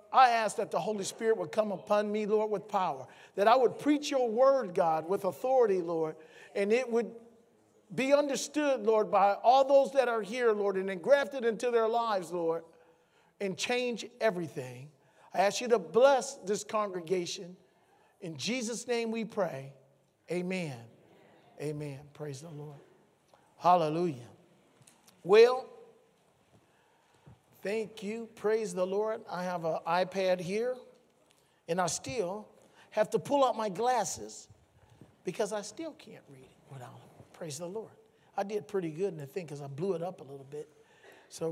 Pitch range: 175-230 Hz